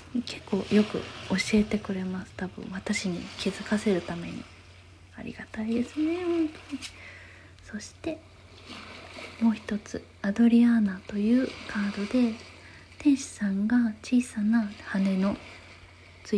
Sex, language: female, Japanese